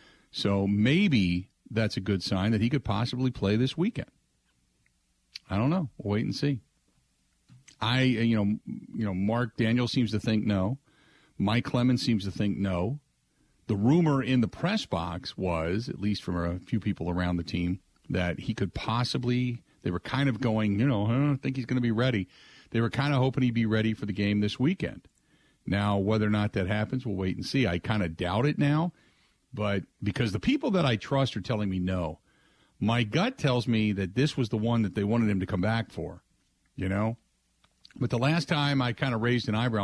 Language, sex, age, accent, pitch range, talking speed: English, male, 40-59, American, 95-125 Hz, 215 wpm